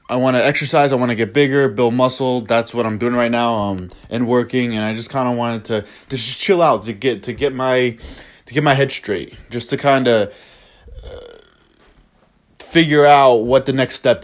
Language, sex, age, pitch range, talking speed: English, male, 20-39, 115-145 Hz, 220 wpm